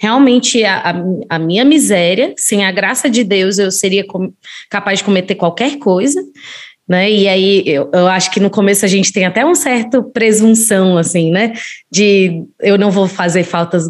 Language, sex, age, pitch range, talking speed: Portuguese, female, 20-39, 185-240 Hz, 175 wpm